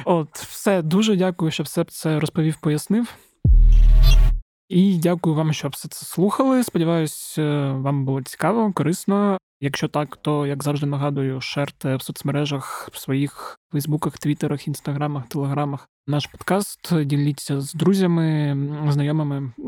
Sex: male